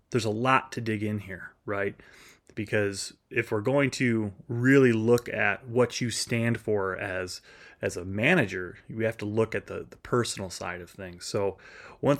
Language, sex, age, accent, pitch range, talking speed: English, male, 30-49, American, 105-130 Hz, 180 wpm